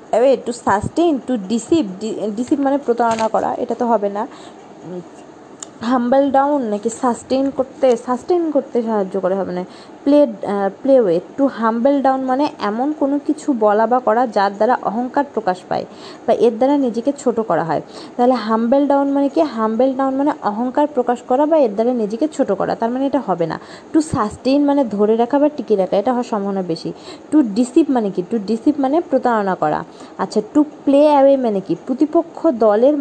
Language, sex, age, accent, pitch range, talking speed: Bengali, female, 20-39, native, 215-280 Hz, 180 wpm